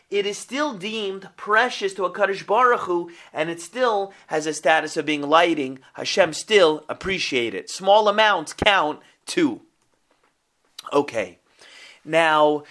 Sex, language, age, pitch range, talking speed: male, English, 30-49, 170-230 Hz, 130 wpm